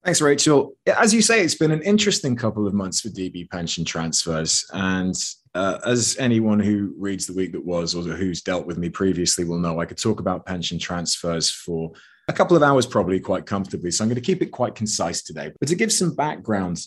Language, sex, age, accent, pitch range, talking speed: English, male, 30-49, British, 85-120 Hz, 220 wpm